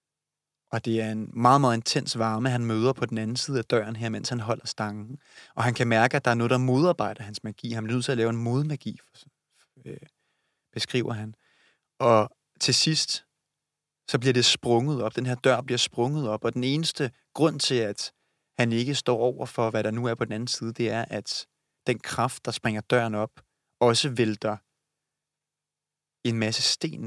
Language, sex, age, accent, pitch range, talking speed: Danish, male, 30-49, native, 115-135 Hz, 200 wpm